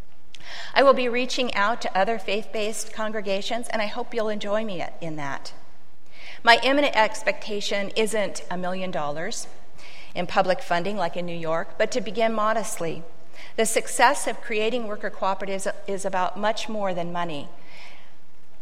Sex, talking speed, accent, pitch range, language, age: female, 150 wpm, American, 180-220 Hz, English, 50-69